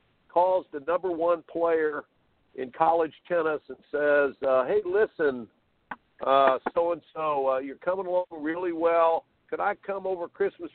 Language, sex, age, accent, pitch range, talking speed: English, male, 60-79, American, 145-185 Hz, 140 wpm